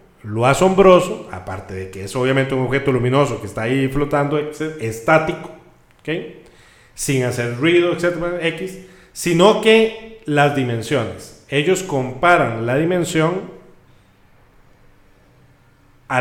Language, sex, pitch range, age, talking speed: Spanish, male, 120-165 Hz, 40-59, 110 wpm